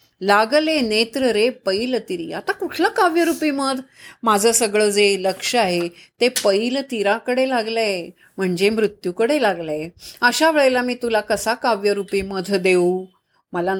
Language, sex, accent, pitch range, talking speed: Marathi, female, native, 195-275 Hz, 130 wpm